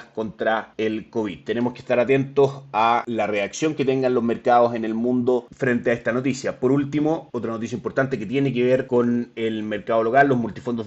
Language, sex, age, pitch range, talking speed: Spanish, male, 30-49, 110-125 Hz, 200 wpm